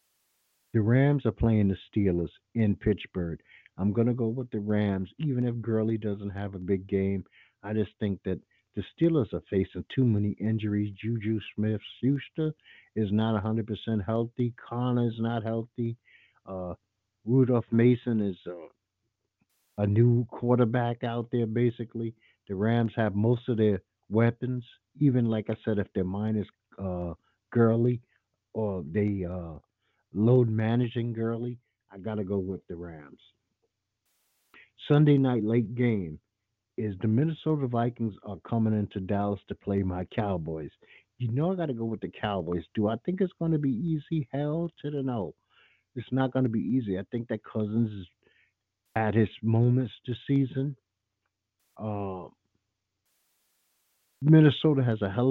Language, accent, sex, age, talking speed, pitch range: English, American, male, 50-69, 150 wpm, 100-125 Hz